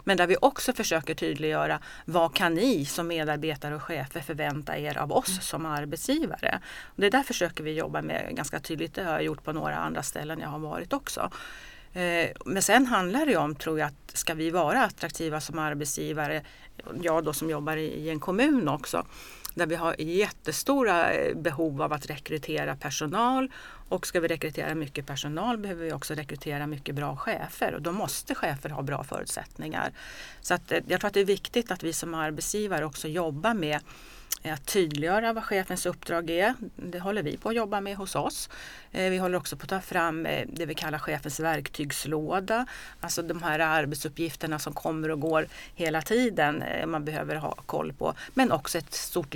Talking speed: 185 wpm